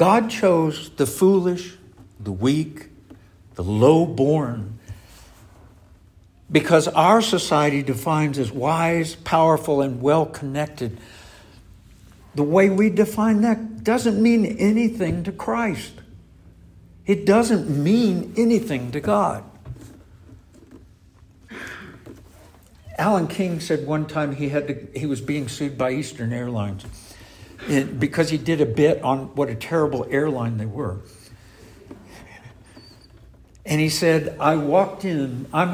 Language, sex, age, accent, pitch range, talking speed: English, male, 60-79, American, 105-155 Hz, 110 wpm